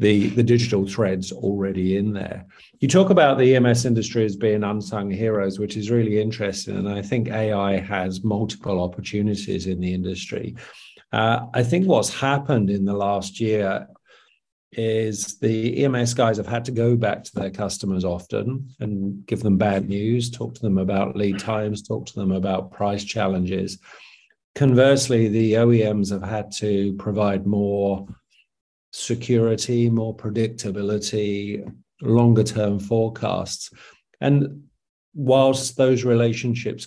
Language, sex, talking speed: English, male, 145 wpm